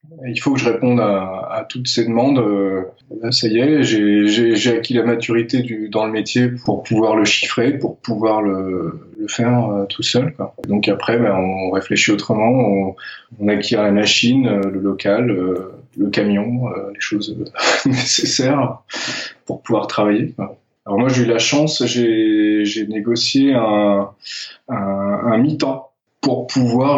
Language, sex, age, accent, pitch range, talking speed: French, male, 20-39, French, 105-125 Hz, 145 wpm